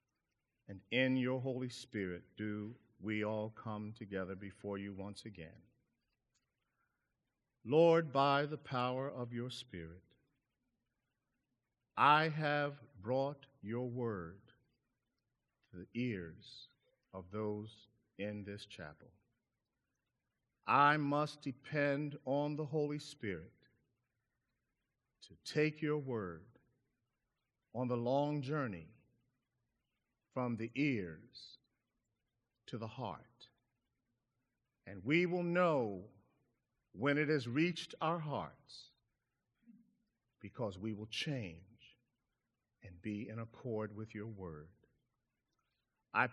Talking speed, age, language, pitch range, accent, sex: 100 wpm, 50-69, English, 110-135 Hz, American, male